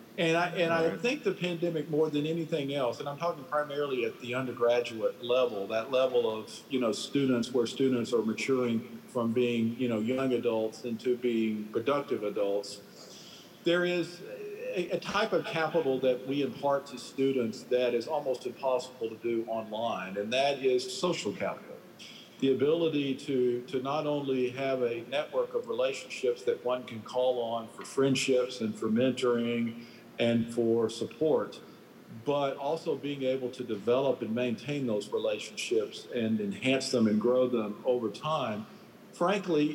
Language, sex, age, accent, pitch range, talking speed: English, male, 50-69, American, 120-160 Hz, 160 wpm